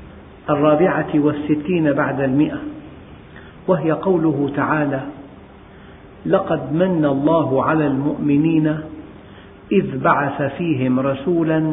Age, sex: 50-69, male